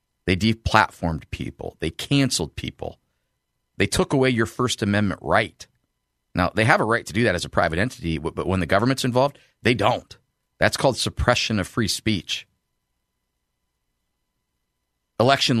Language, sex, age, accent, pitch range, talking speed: English, male, 40-59, American, 80-115 Hz, 150 wpm